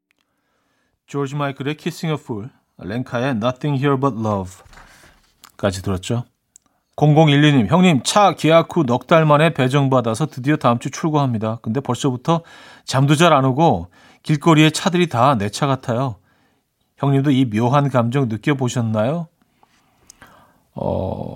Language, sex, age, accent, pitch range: Korean, male, 40-59, native, 105-150 Hz